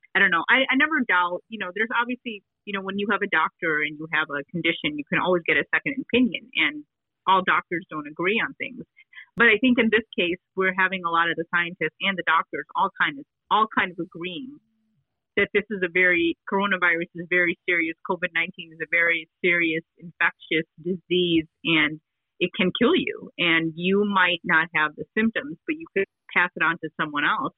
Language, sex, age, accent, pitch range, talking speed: English, female, 30-49, American, 165-205 Hz, 210 wpm